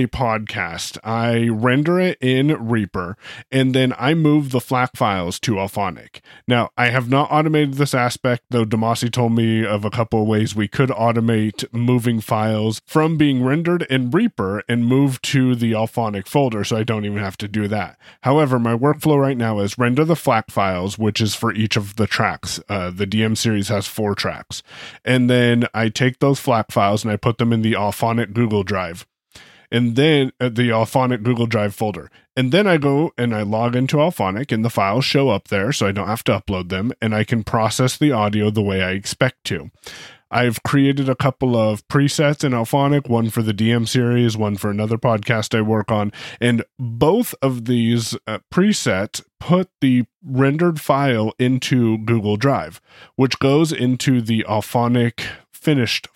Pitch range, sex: 110-130 Hz, male